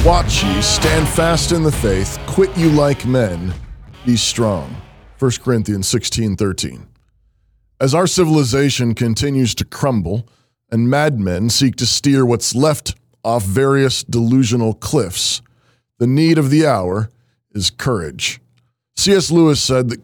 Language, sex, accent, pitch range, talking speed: English, male, American, 110-140 Hz, 130 wpm